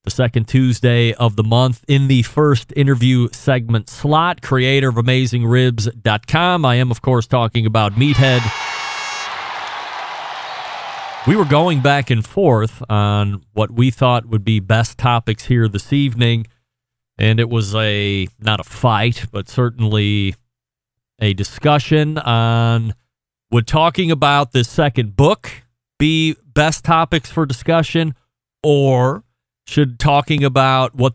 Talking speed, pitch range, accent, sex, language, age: 130 wpm, 115-140 Hz, American, male, English, 40-59